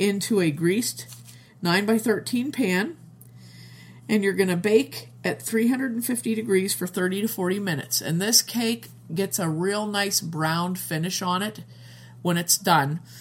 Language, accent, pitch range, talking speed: English, American, 140-200 Hz, 150 wpm